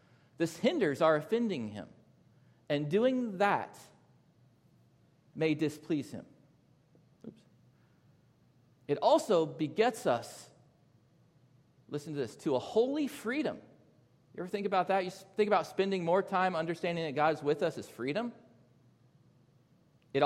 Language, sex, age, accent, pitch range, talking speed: English, male, 40-59, American, 125-170 Hz, 125 wpm